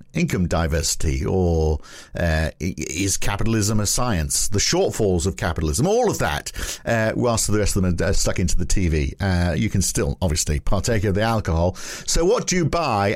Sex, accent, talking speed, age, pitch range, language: male, British, 185 wpm, 50-69, 90-120 Hz, English